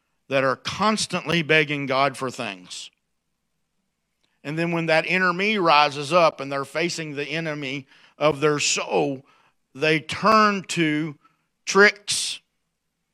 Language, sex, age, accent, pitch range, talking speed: English, male, 50-69, American, 150-185 Hz, 125 wpm